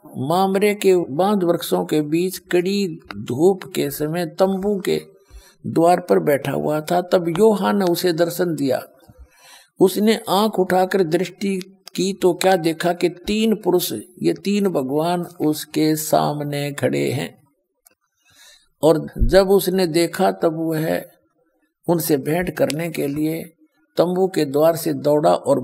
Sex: male